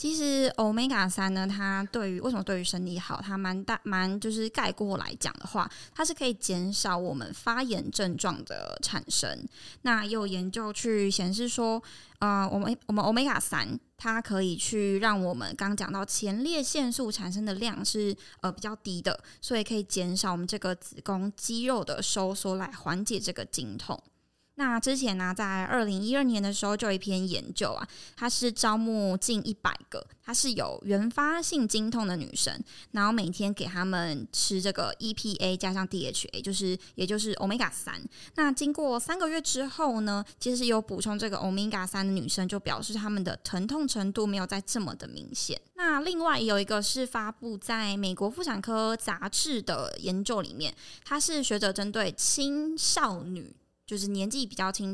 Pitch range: 195-230 Hz